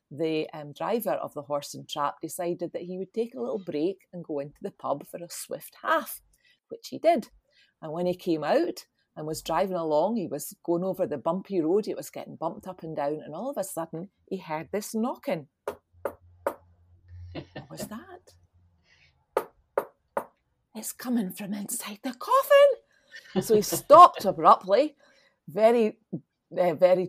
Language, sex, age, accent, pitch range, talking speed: English, female, 40-59, British, 155-215 Hz, 165 wpm